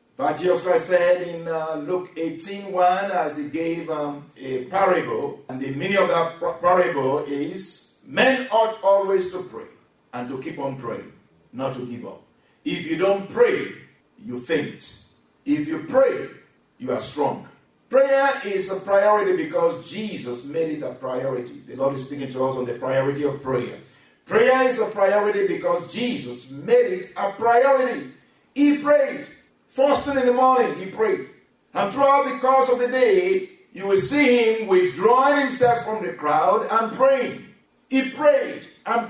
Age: 50-69